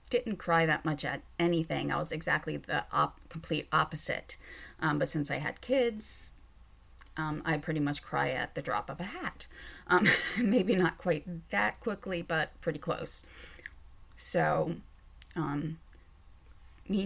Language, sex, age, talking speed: English, female, 30-49, 145 wpm